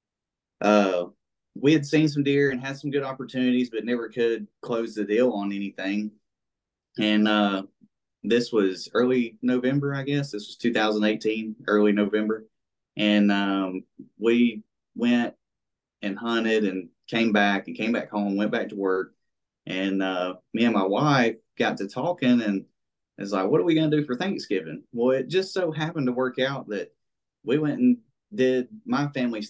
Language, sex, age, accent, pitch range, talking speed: English, male, 20-39, American, 105-140 Hz, 170 wpm